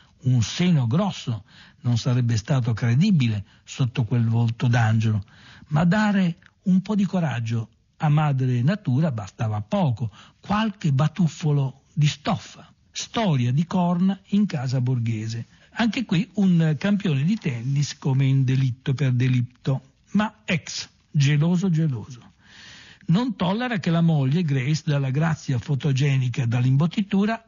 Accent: native